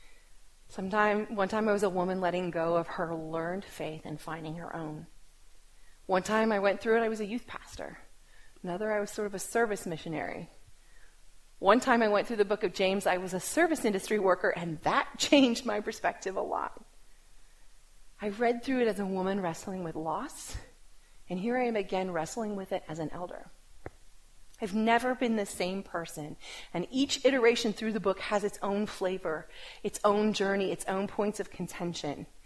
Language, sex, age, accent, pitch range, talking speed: English, female, 30-49, American, 185-265 Hz, 190 wpm